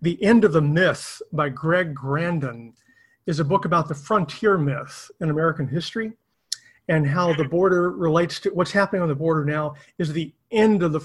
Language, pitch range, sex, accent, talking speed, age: English, 150-195 Hz, male, American, 190 wpm, 40-59